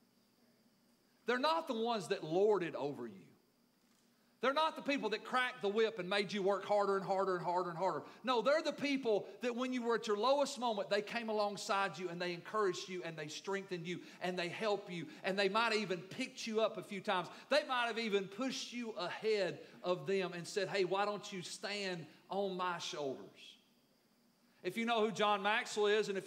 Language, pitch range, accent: English, 190-230 Hz, American